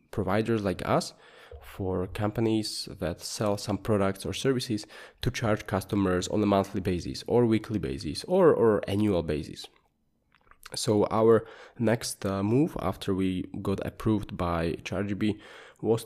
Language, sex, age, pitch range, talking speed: English, male, 20-39, 95-110 Hz, 140 wpm